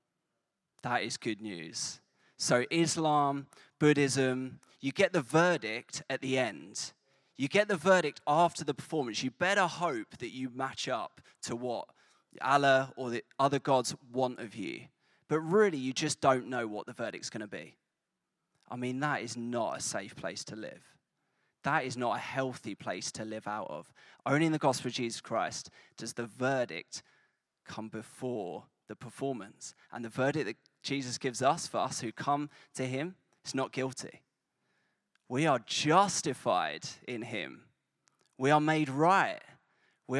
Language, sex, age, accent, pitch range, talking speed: English, male, 20-39, British, 125-150 Hz, 165 wpm